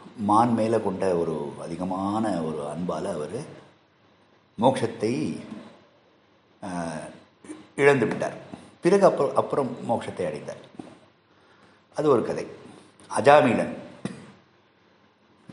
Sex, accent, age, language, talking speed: male, native, 50-69, Tamil, 75 wpm